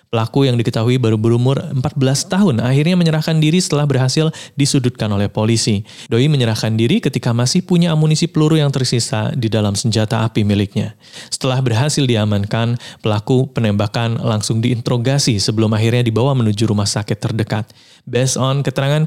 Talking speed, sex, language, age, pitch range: 150 wpm, male, Indonesian, 20-39, 110-135 Hz